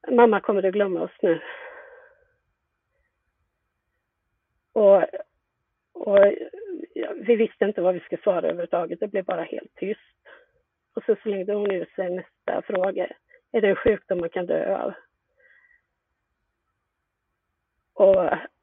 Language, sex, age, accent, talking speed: Swedish, female, 30-49, native, 130 wpm